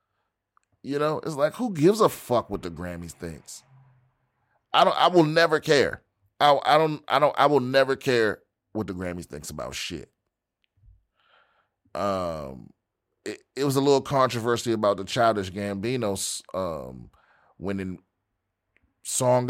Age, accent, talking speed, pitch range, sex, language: 30-49, American, 145 wpm, 100-145 Hz, male, English